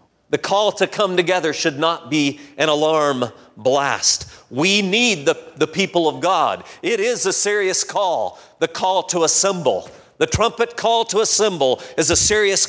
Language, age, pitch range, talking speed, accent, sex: English, 40-59, 175-220 Hz, 165 wpm, American, male